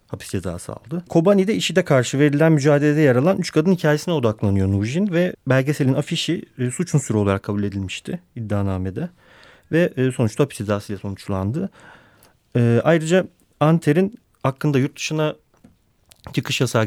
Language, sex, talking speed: Turkish, male, 140 wpm